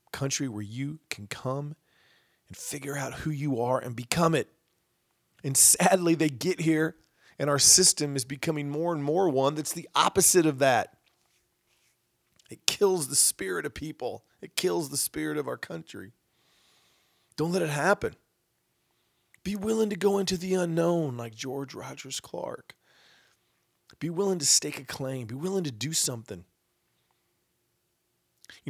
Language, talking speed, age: English, 155 wpm, 40-59